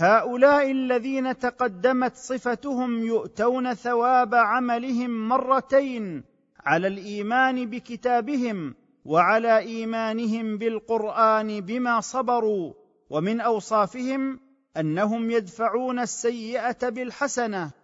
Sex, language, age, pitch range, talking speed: male, Arabic, 40-59, 200-240 Hz, 75 wpm